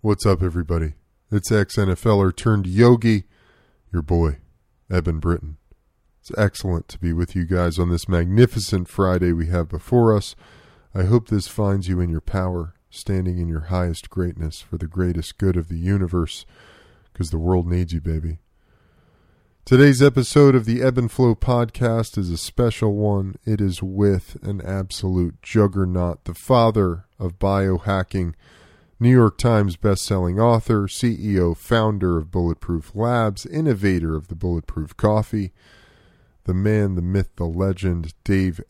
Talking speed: 150 wpm